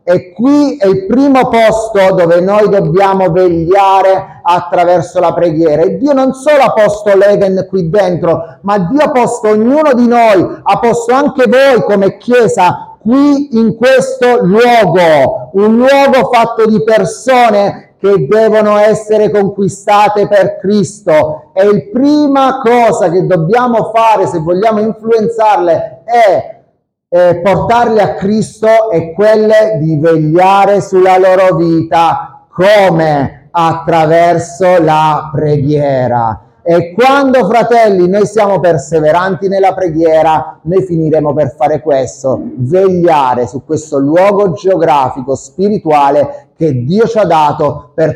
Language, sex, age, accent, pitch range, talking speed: Italian, male, 30-49, native, 160-220 Hz, 125 wpm